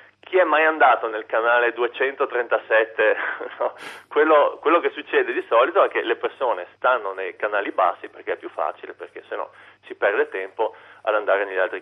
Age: 40-59